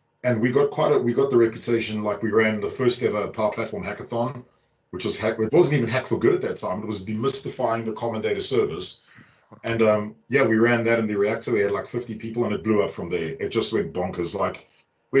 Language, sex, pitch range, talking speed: English, male, 110-120 Hz, 250 wpm